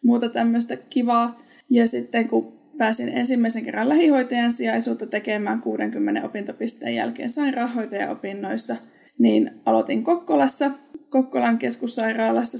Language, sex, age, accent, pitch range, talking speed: Finnish, female, 20-39, native, 225-270 Hz, 100 wpm